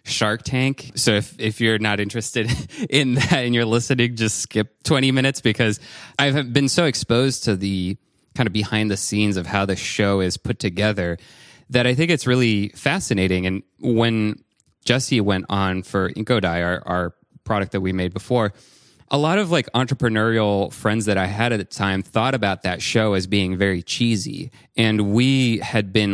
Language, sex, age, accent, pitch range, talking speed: English, male, 20-39, American, 100-125 Hz, 185 wpm